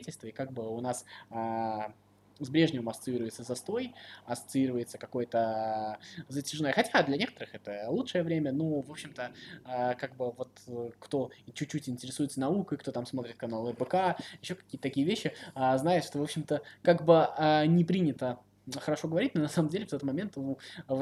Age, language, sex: 20-39, Russian, male